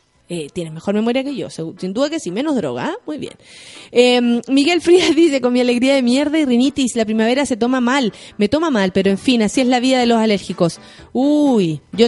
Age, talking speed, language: 30-49, 235 wpm, Spanish